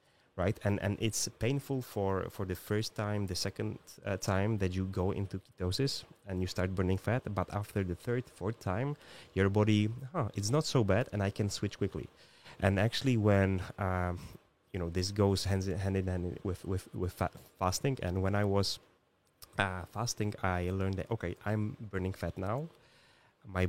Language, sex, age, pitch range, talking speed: Slovak, male, 20-39, 95-105 Hz, 190 wpm